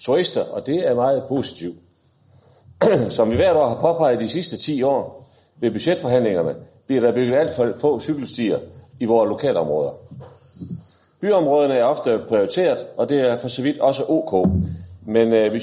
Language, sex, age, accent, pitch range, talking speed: Danish, male, 40-59, native, 105-145 Hz, 165 wpm